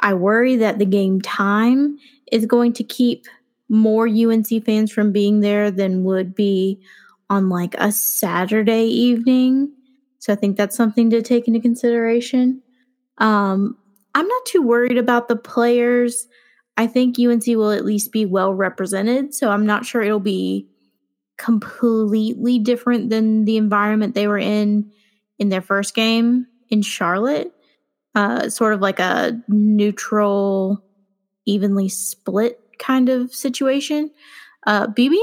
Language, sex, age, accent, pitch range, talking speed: English, female, 20-39, American, 200-240 Hz, 140 wpm